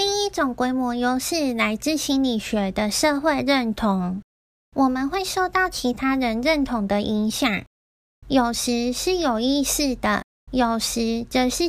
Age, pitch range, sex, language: 10-29, 235-320 Hz, female, Chinese